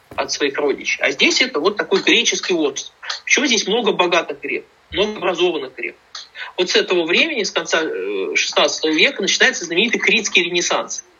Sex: male